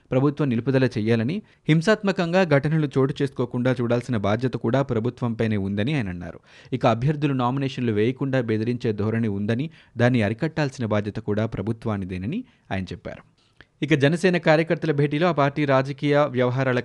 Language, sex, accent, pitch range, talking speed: Telugu, male, native, 115-145 Hz, 130 wpm